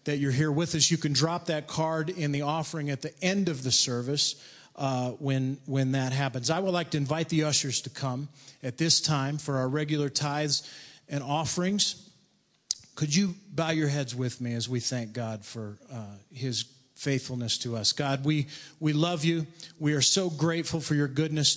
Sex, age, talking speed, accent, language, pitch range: male, 40-59, 200 wpm, American, English, 135-165 Hz